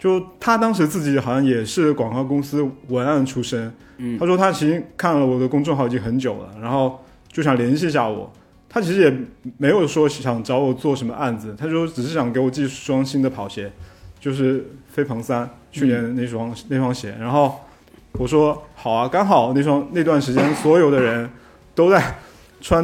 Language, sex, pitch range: Chinese, male, 120-150 Hz